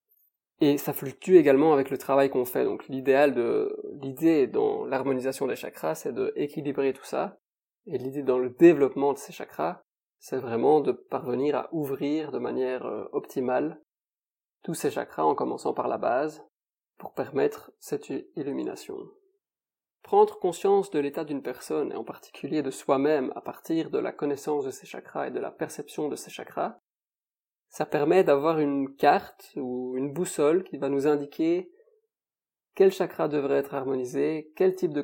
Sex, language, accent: male, French, French